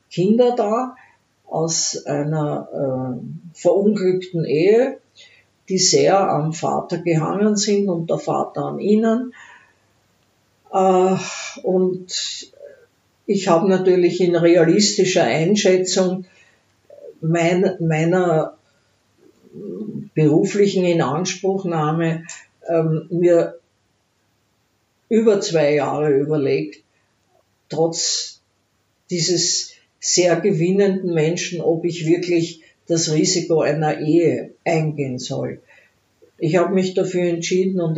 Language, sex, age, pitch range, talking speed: German, female, 50-69, 160-195 Hz, 85 wpm